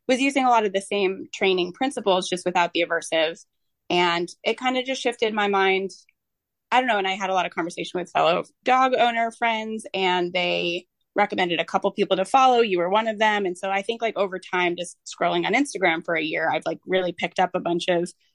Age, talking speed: 20-39, 230 wpm